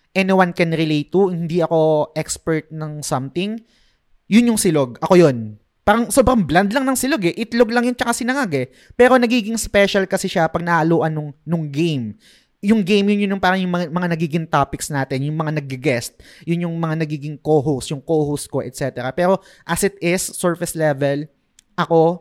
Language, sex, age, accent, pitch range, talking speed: Filipino, male, 20-39, native, 150-185 Hz, 185 wpm